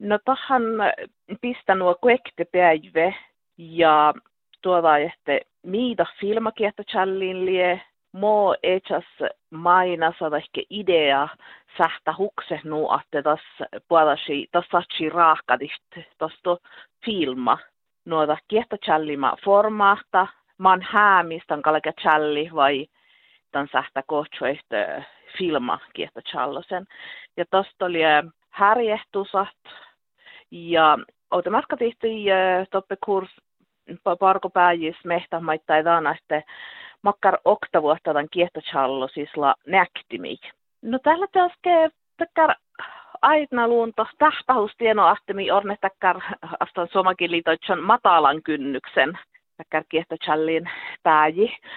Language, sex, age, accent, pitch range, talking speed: Czech, female, 50-69, Finnish, 160-210 Hz, 75 wpm